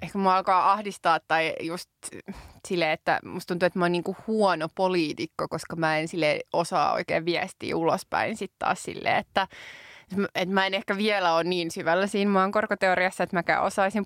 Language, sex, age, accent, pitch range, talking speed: Finnish, female, 20-39, native, 170-200 Hz, 165 wpm